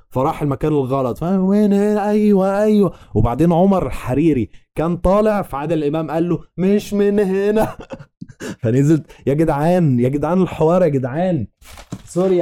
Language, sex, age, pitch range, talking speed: Arabic, male, 20-39, 120-175 Hz, 135 wpm